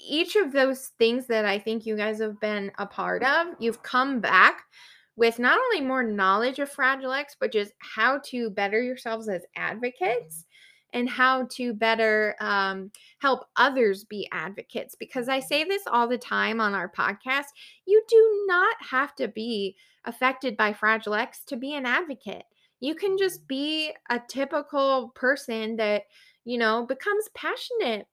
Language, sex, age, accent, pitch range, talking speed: English, female, 20-39, American, 220-275 Hz, 165 wpm